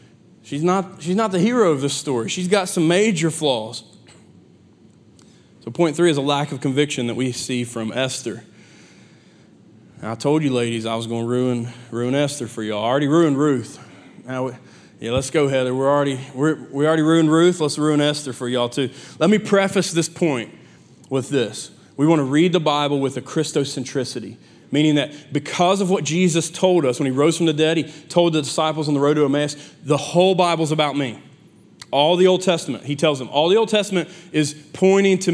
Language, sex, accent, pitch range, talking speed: English, male, American, 140-185 Hz, 205 wpm